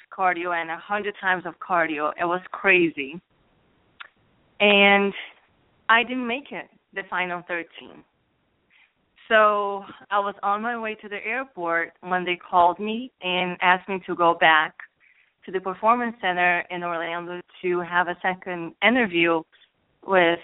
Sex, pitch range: female, 170-205 Hz